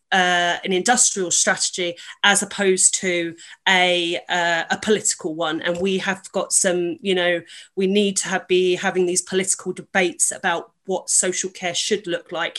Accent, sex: British, female